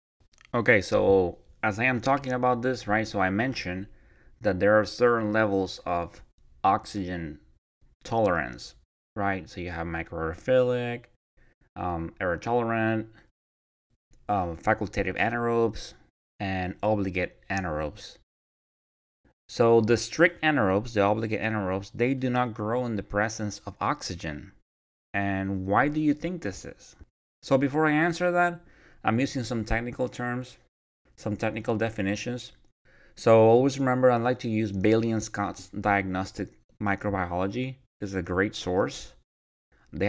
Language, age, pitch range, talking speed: English, 20-39, 95-115 Hz, 130 wpm